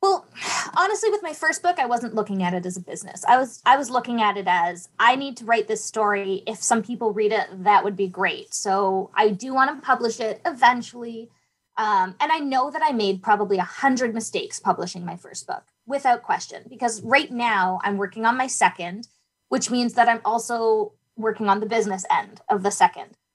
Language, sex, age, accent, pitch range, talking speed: English, female, 20-39, American, 200-260 Hz, 215 wpm